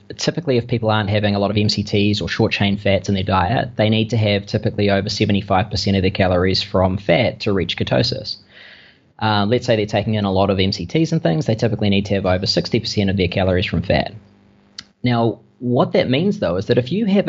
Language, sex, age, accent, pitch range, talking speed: English, male, 20-39, Australian, 100-115 Hz, 220 wpm